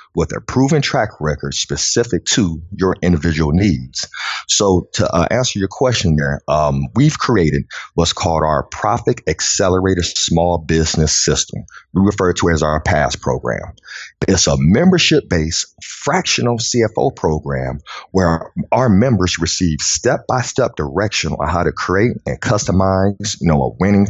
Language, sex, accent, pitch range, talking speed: English, male, American, 80-100 Hz, 145 wpm